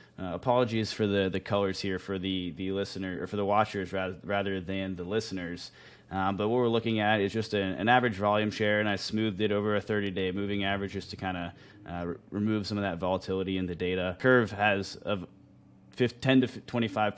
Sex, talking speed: male, 210 wpm